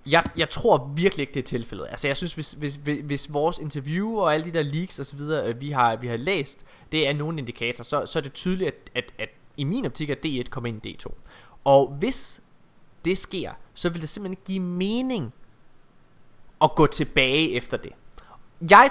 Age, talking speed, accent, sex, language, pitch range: 20-39, 205 wpm, native, male, Danish, 125-170 Hz